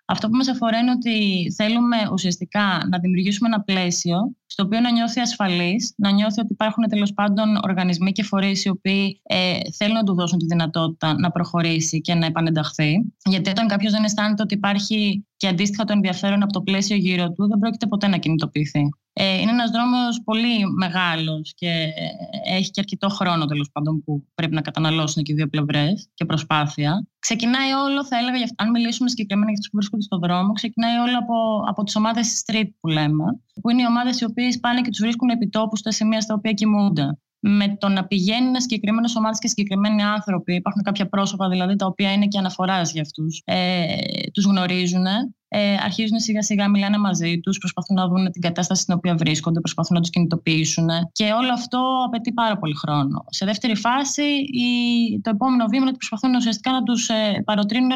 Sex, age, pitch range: female, 20-39, 180-225 Hz